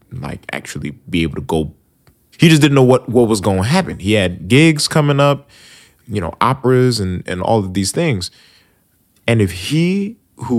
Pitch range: 90-125 Hz